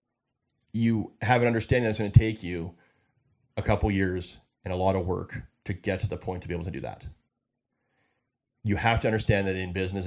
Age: 30-49